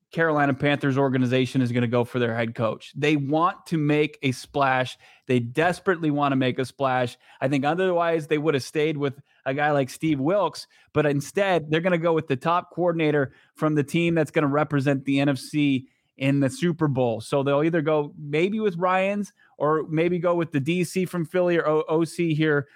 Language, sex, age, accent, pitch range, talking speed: English, male, 20-39, American, 130-160 Hz, 205 wpm